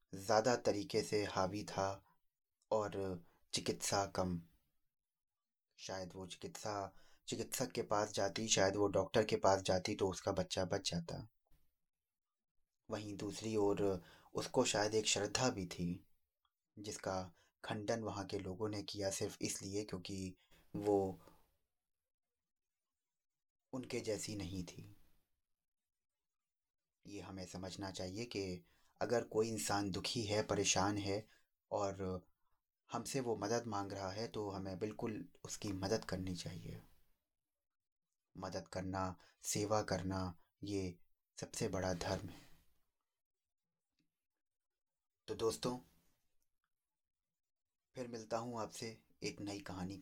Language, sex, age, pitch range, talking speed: Hindi, male, 30-49, 95-105 Hz, 115 wpm